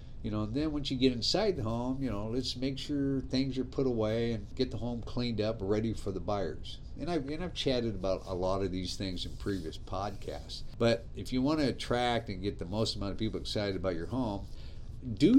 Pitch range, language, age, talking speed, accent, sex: 100-130 Hz, English, 50-69, 235 wpm, American, male